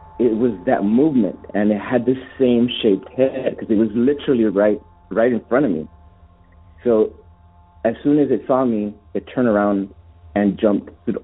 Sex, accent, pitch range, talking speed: male, American, 85-110 Hz, 175 wpm